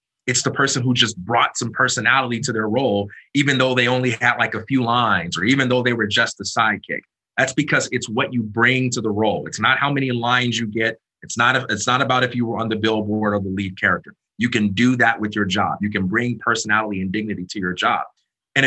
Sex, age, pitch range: male, 30-49, 110-150 Hz